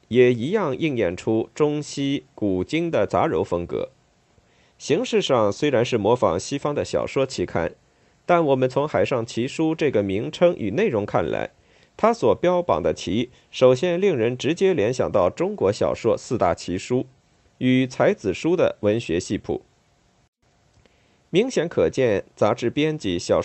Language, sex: Chinese, male